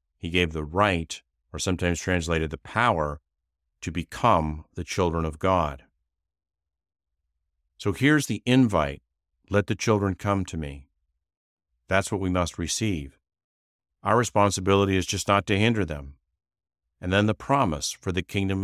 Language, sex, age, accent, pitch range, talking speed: English, male, 50-69, American, 75-100 Hz, 145 wpm